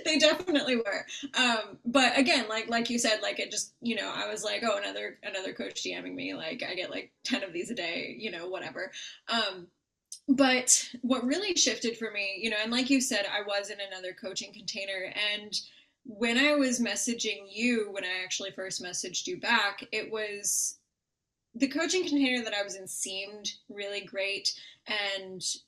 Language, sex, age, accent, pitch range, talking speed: English, female, 20-39, American, 195-250 Hz, 190 wpm